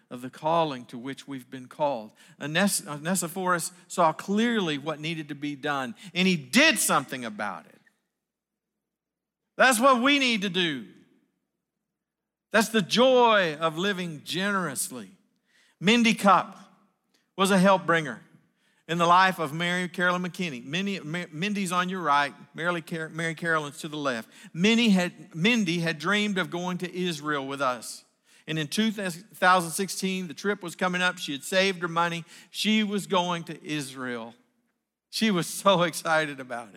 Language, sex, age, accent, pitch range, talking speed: English, male, 50-69, American, 145-195 Hz, 145 wpm